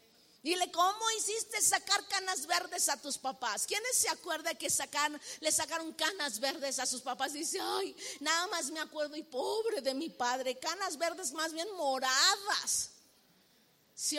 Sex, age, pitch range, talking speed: female, 40-59, 265-350 Hz, 155 wpm